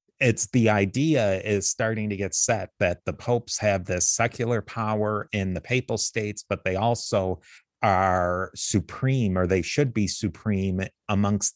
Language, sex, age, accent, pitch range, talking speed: English, male, 30-49, American, 95-120 Hz, 155 wpm